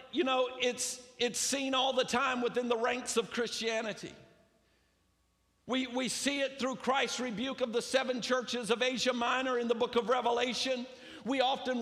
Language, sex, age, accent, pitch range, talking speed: English, male, 50-69, American, 235-265 Hz, 175 wpm